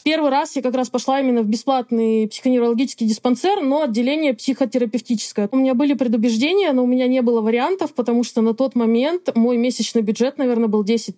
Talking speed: 190 wpm